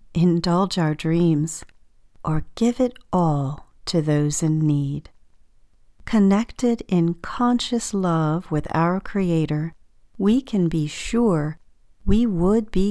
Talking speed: 115 wpm